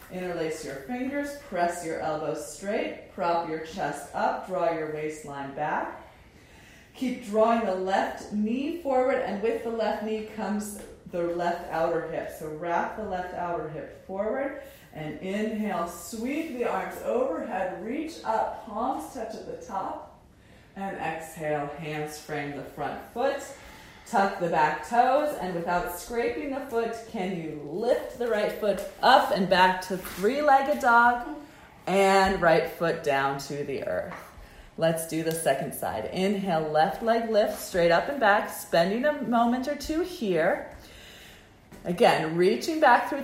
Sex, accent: female, American